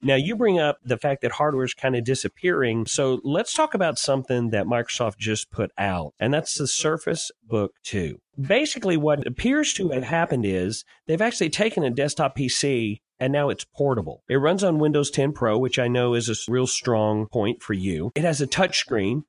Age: 40-59